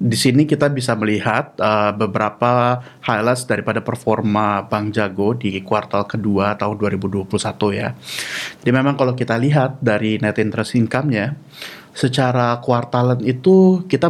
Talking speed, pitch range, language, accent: 135 wpm, 105-130 Hz, Indonesian, native